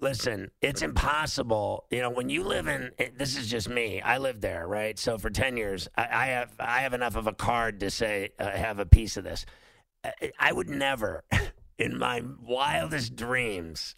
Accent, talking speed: American, 185 wpm